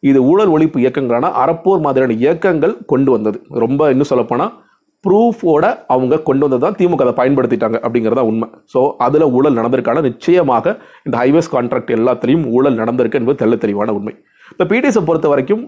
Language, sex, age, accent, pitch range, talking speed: Tamil, male, 30-49, native, 120-160 Hz, 150 wpm